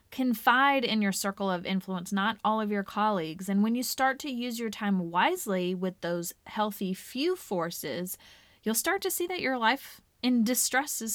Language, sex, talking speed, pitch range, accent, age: English, female, 190 wpm, 195-255 Hz, American, 20-39